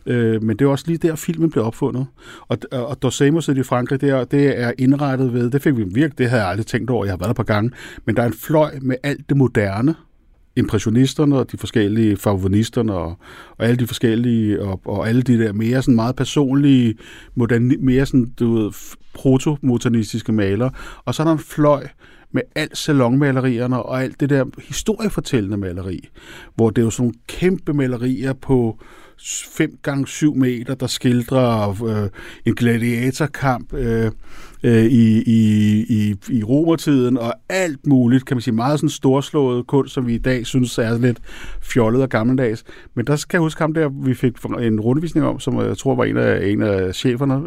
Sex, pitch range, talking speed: male, 115-140 Hz, 190 wpm